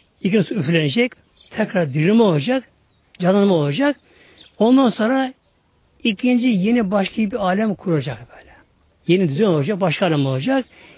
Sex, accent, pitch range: male, native, 155-230 Hz